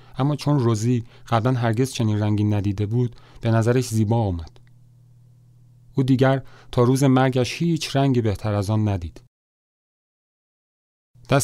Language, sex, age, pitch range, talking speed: Persian, male, 40-59, 110-125 Hz, 130 wpm